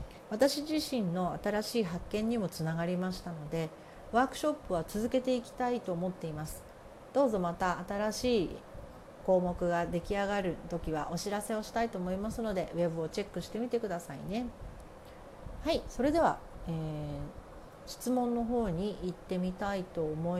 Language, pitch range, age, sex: Japanese, 175-240 Hz, 40-59, female